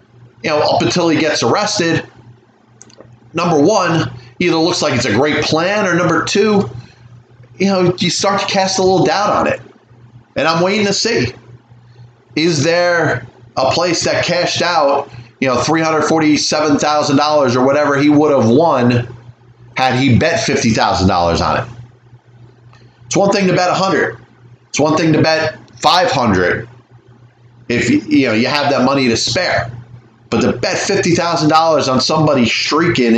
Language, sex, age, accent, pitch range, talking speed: English, male, 30-49, American, 120-160 Hz, 175 wpm